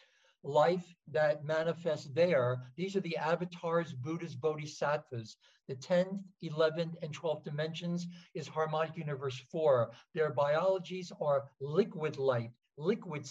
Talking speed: 115 wpm